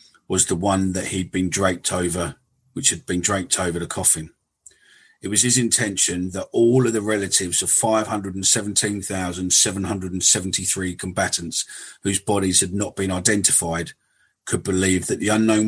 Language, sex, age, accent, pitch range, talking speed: English, male, 40-59, British, 90-100 Hz, 145 wpm